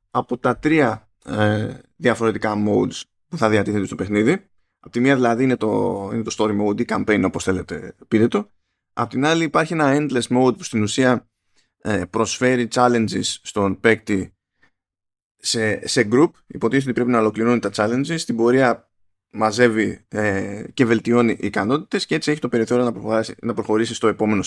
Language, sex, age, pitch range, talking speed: Greek, male, 20-39, 105-135 Hz, 170 wpm